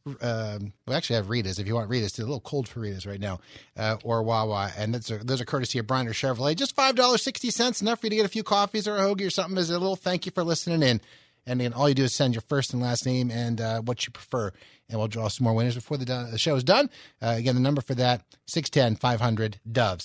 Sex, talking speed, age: male, 270 wpm, 30-49